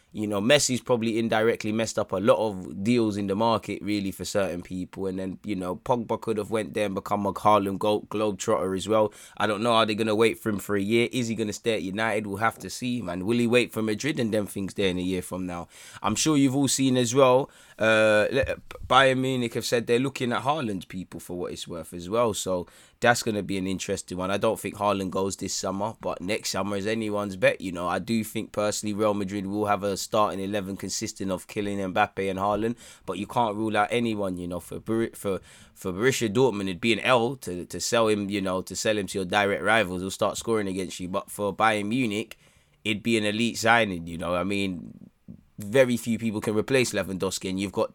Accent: British